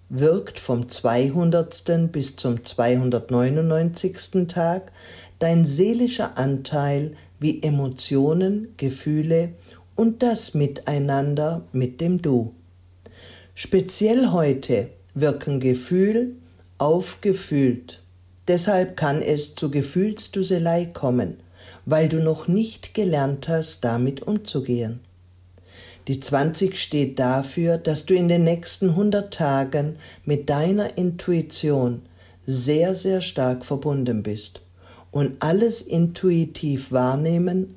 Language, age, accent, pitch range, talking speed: German, 50-69, German, 120-170 Hz, 95 wpm